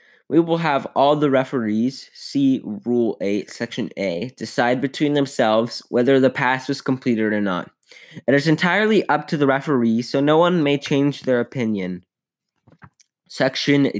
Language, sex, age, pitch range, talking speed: English, male, 10-29, 115-145 Hz, 155 wpm